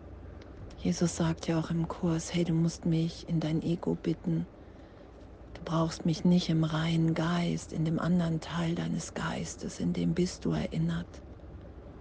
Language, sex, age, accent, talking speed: German, female, 50-69, German, 160 wpm